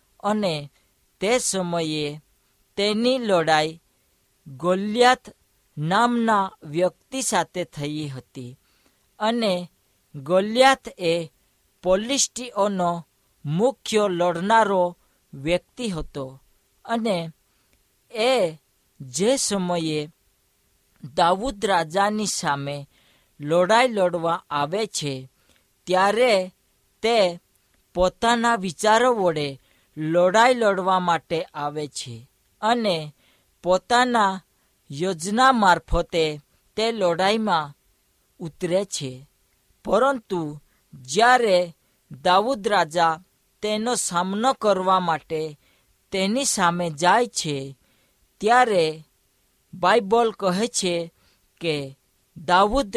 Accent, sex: native, female